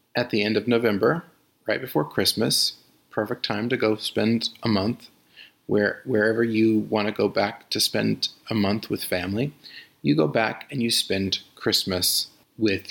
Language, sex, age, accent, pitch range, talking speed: English, male, 40-59, American, 100-120 Hz, 165 wpm